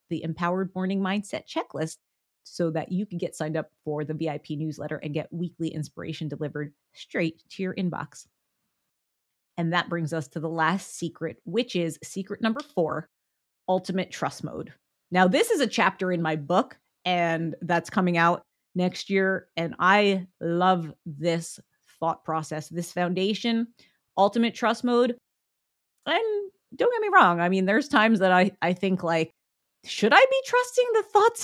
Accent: American